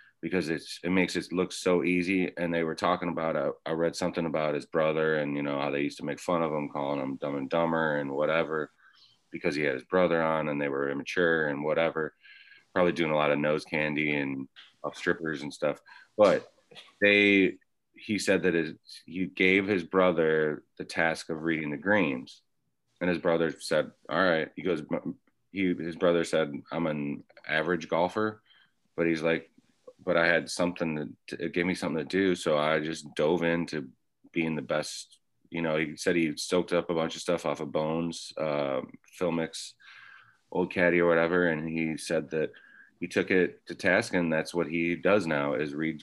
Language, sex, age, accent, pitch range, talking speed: English, male, 30-49, American, 75-90 Hz, 200 wpm